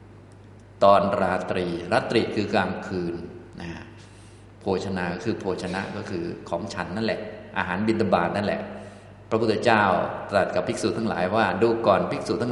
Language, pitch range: Thai, 90-110 Hz